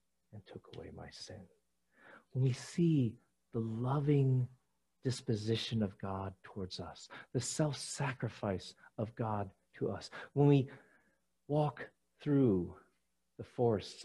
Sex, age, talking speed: male, 50-69, 115 wpm